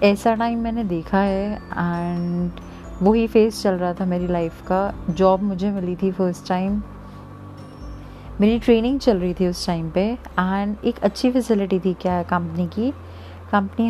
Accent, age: native, 30-49